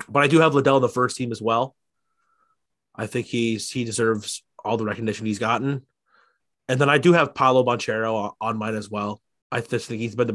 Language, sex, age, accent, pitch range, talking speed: English, male, 20-39, American, 105-135 Hz, 225 wpm